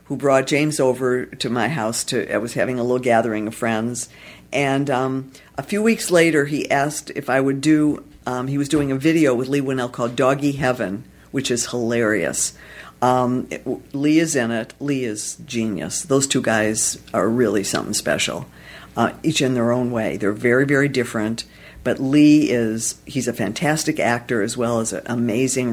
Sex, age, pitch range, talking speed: female, 50-69, 120-155 Hz, 185 wpm